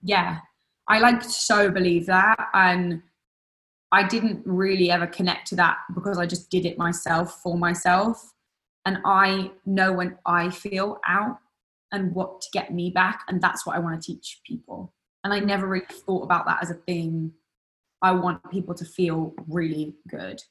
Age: 20-39